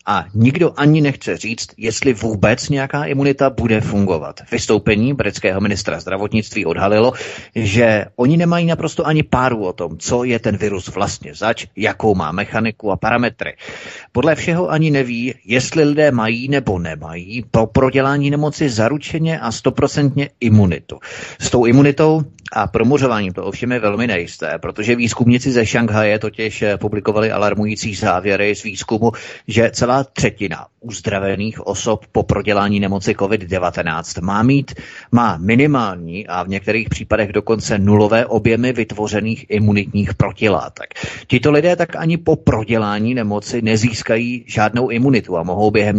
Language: Czech